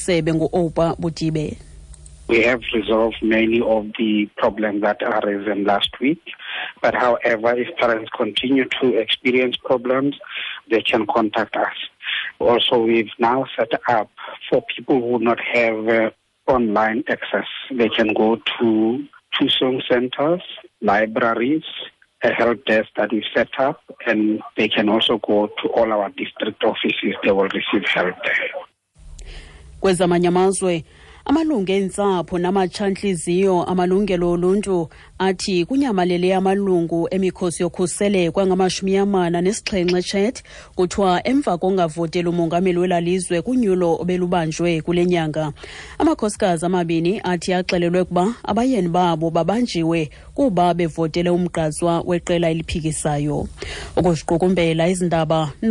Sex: male